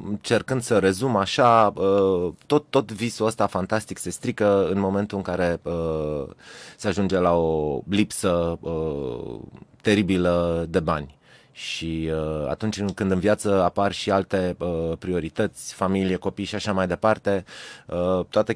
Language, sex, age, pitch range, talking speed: Romanian, male, 20-39, 90-110 Hz, 125 wpm